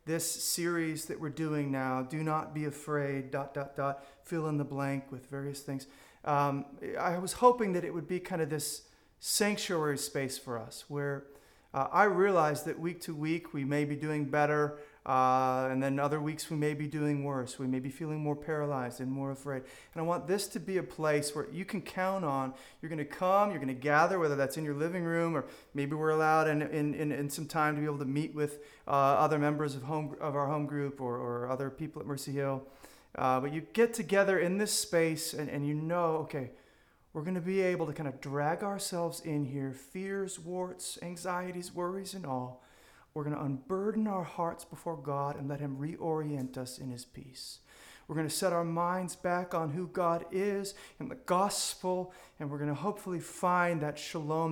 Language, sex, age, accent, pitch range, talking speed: English, male, 40-59, American, 140-180 Hz, 210 wpm